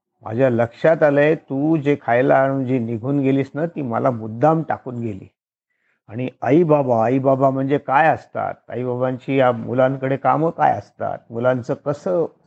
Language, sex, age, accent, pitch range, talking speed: Marathi, male, 50-69, native, 115-155 Hz, 160 wpm